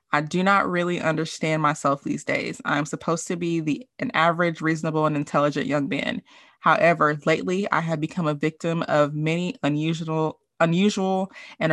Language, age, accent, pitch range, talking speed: English, 20-39, American, 155-205 Hz, 165 wpm